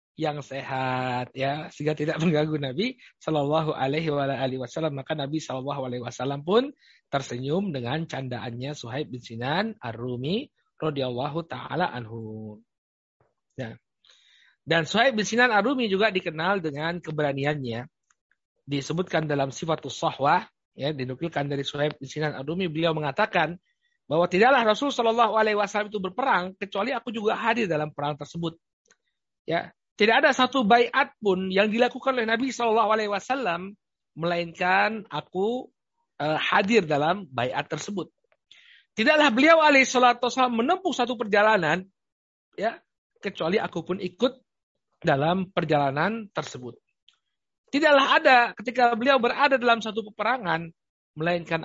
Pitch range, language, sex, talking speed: 145-225 Hz, Indonesian, male, 125 wpm